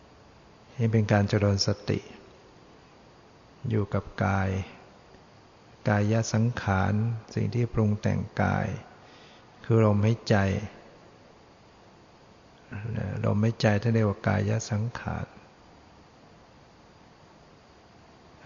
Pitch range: 100-110 Hz